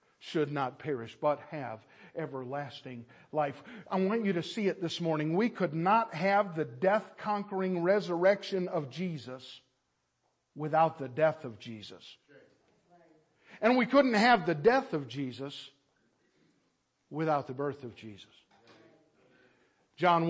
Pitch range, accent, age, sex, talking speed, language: 130-175 Hz, American, 50-69, male, 125 wpm, English